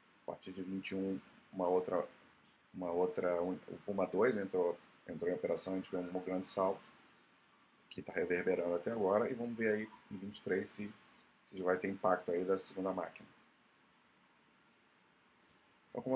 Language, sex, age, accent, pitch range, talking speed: Portuguese, male, 30-49, Brazilian, 90-110 Hz, 155 wpm